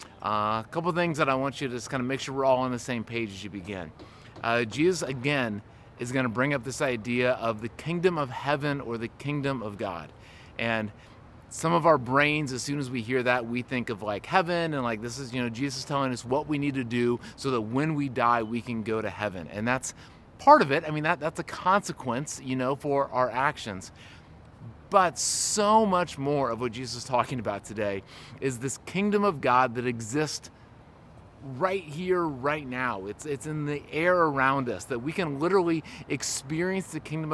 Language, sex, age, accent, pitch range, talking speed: English, male, 30-49, American, 120-150 Hz, 215 wpm